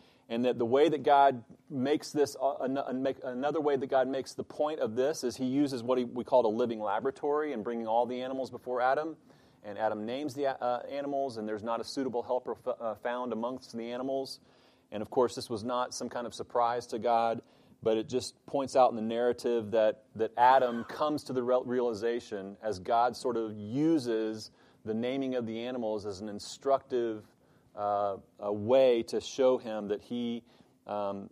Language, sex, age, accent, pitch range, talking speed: English, male, 30-49, American, 110-130 Hz, 185 wpm